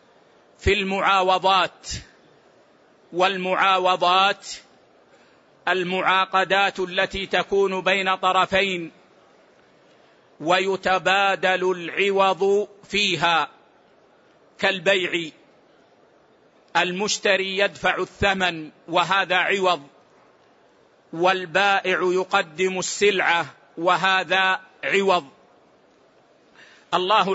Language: Arabic